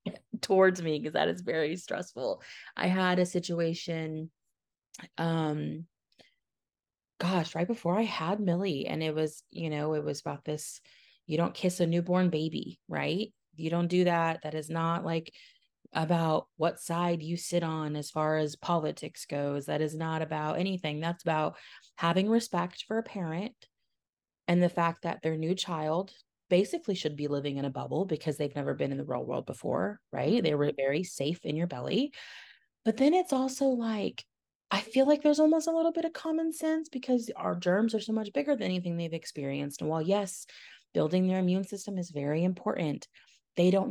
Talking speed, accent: 185 wpm, American